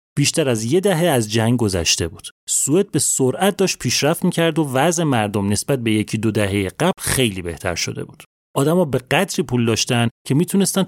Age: 30-49